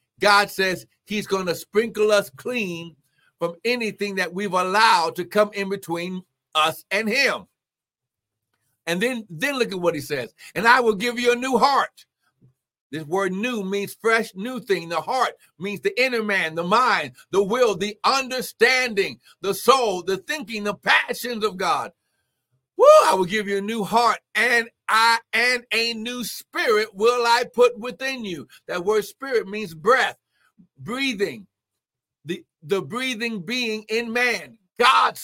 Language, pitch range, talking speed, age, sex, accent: English, 170-230 Hz, 160 wpm, 60-79, male, American